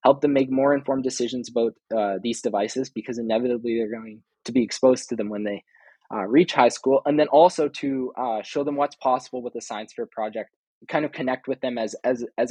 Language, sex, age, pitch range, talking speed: English, male, 20-39, 120-145 Hz, 225 wpm